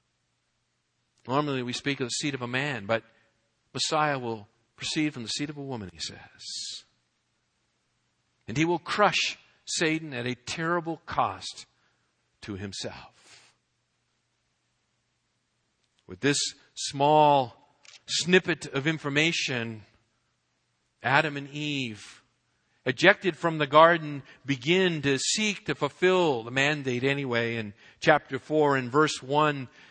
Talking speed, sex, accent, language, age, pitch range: 120 wpm, male, American, English, 50-69, 120-150 Hz